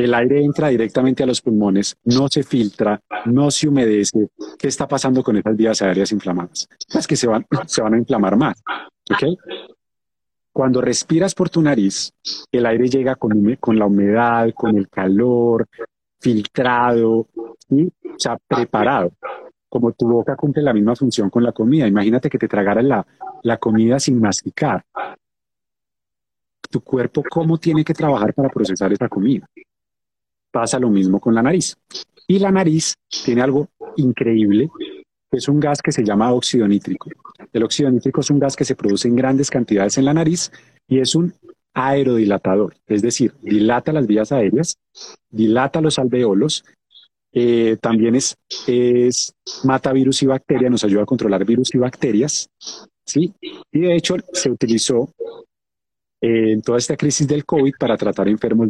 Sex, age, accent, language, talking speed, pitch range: male, 30-49, Colombian, English, 160 wpm, 110-140 Hz